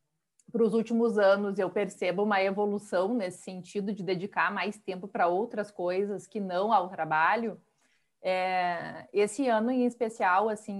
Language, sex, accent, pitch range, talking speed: Portuguese, female, Brazilian, 195-235 Hz, 150 wpm